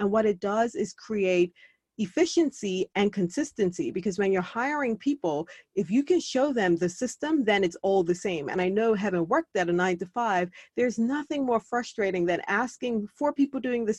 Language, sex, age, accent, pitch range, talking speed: English, female, 30-49, American, 190-250 Hz, 195 wpm